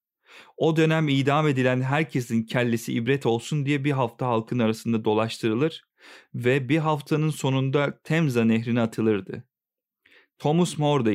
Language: Turkish